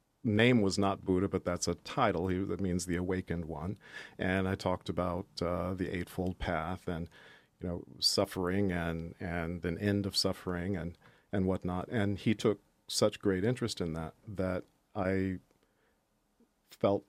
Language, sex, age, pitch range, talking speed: English, male, 50-69, 85-100 Hz, 160 wpm